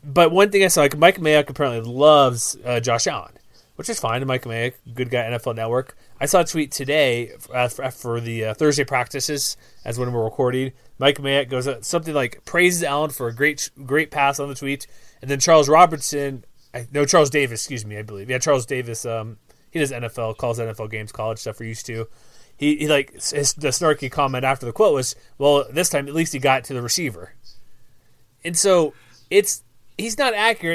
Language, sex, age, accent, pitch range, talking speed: English, male, 30-49, American, 125-170 Hz, 215 wpm